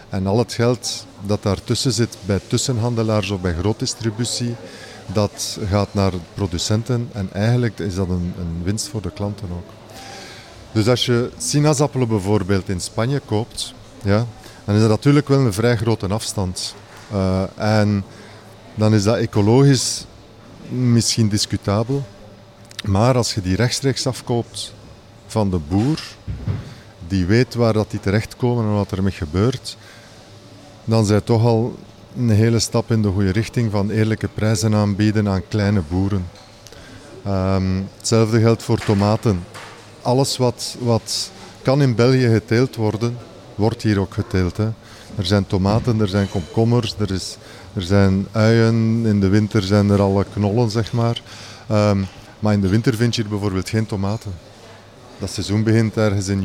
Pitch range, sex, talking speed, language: 100-115 Hz, male, 150 wpm, Dutch